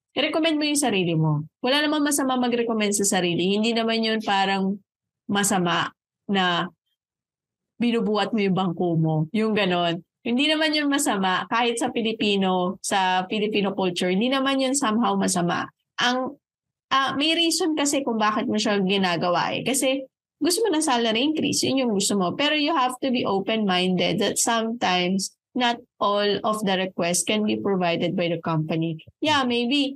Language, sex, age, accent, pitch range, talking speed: Filipino, female, 20-39, native, 190-250 Hz, 160 wpm